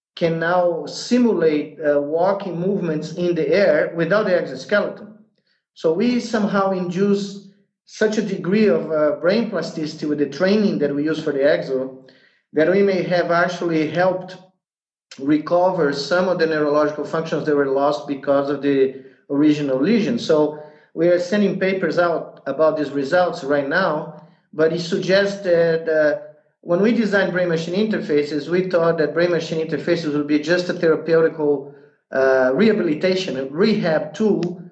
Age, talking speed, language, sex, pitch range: 40-59, 155 wpm, English, male, 150-190 Hz